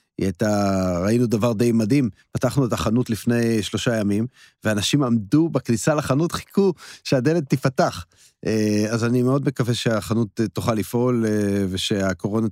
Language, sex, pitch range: Hebrew, male, 105-125 Hz